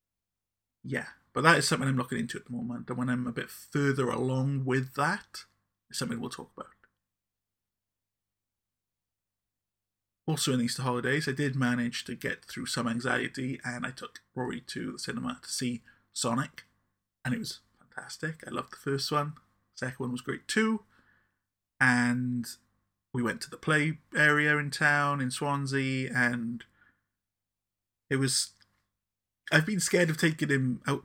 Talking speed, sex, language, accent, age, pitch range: 160 wpm, male, English, British, 30-49, 100-135 Hz